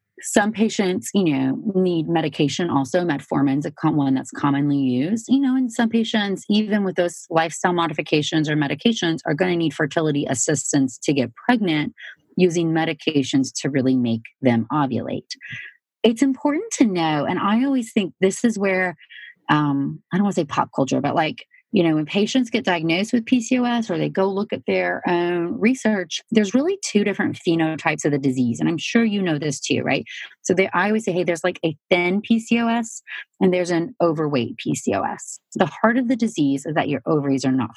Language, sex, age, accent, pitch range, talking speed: English, female, 30-49, American, 155-225 Hz, 190 wpm